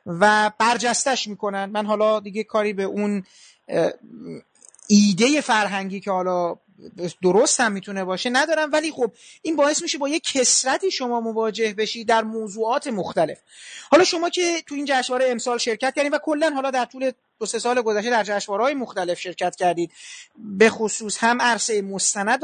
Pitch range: 200-265 Hz